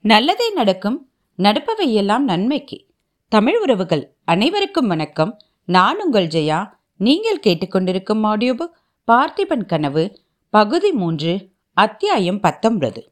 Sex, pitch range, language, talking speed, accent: female, 190-275 Hz, Tamil, 80 wpm, native